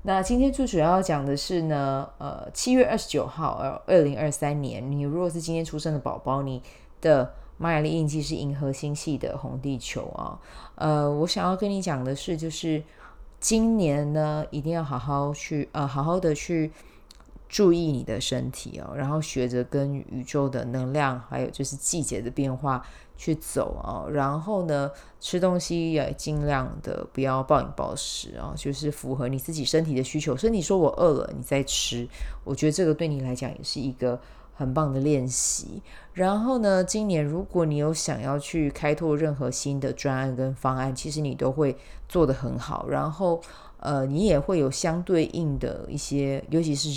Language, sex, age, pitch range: Chinese, female, 20-39, 135-160 Hz